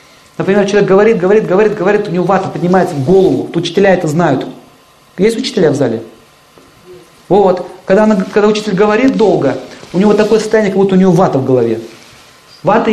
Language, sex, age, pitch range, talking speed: Russian, male, 40-59, 150-195 Hz, 170 wpm